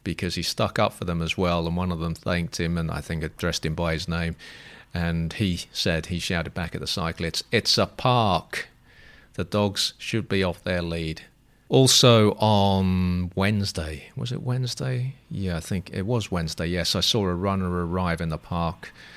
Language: English